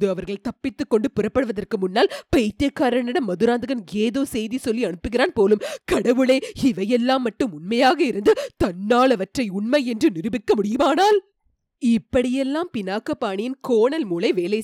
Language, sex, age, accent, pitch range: Tamil, female, 30-49, native, 200-280 Hz